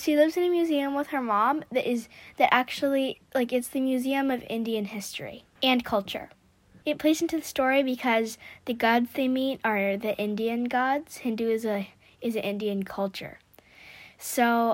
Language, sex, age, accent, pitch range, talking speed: English, female, 20-39, American, 230-280 Hz, 175 wpm